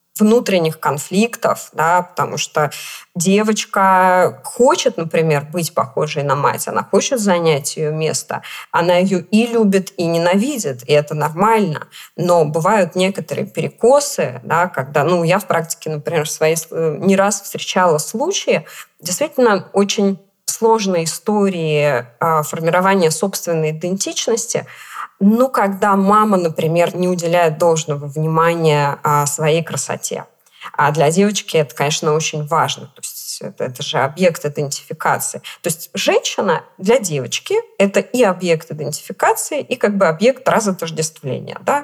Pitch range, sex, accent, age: 155-210 Hz, female, native, 20-39